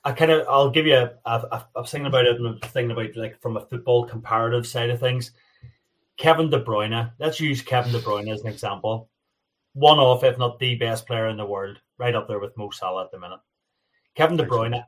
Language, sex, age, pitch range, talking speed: English, male, 30-49, 110-130 Hz, 220 wpm